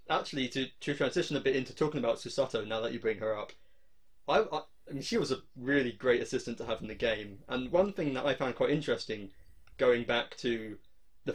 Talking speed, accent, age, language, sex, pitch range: 225 wpm, British, 20-39, English, male, 115-150 Hz